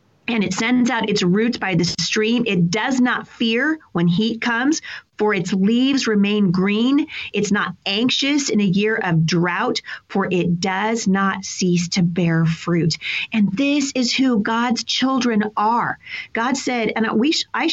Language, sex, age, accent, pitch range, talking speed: English, female, 40-59, American, 180-240 Hz, 165 wpm